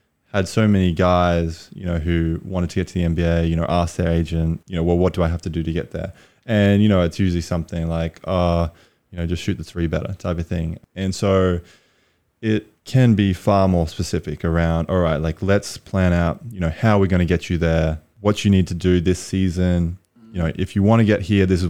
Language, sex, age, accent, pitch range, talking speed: English, male, 20-39, Australian, 80-95 Hz, 245 wpm